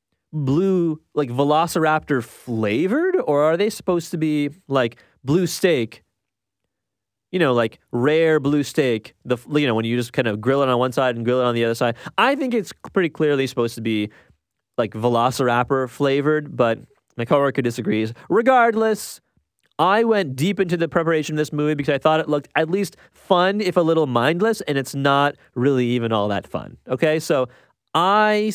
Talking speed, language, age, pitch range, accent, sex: 185 wpm, English, 30-49, 125-185 Hz, American, male